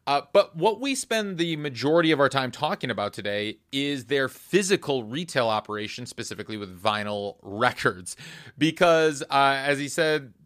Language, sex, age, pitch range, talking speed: English, male, 30-49, 110-145 Hz, 155 wpm